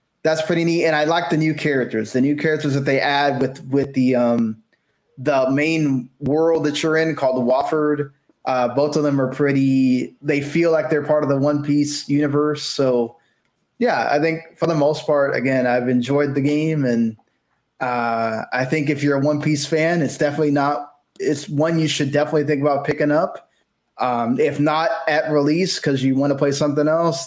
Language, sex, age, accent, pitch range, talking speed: English, male, 20-39, American, 125-150 Hz, 200 wpm